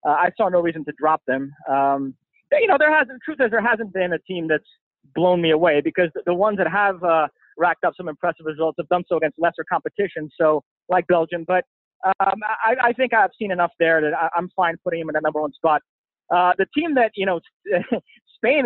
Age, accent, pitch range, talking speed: 20-39, American, 155-190 Hz, 230 wpm